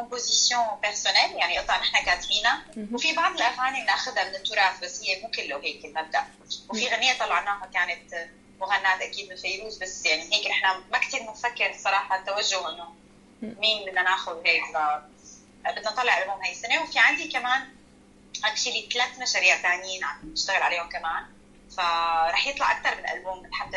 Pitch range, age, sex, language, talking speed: 180-235 Hz, 20-39, female, Arabic, 160 wpm